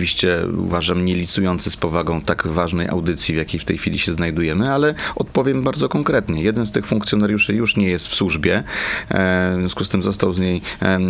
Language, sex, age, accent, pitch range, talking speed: Polish, male, 30-49, native, 95-120 Hz, 190 wpm